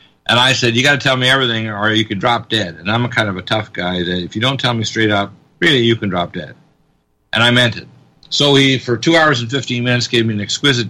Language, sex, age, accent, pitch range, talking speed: English, male, 50-69, American, 105-125 Hz, 280 wpm